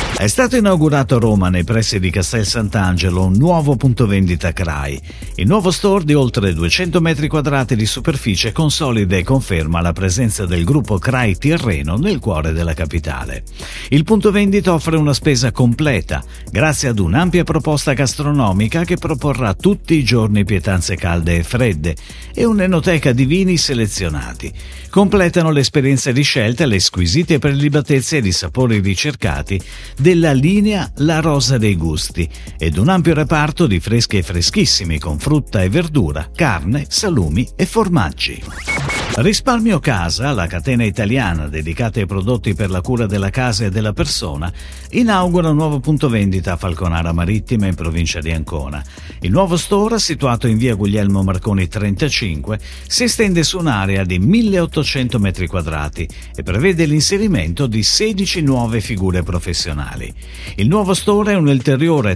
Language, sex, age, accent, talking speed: Italian, male, 50-69, native, 150 wpm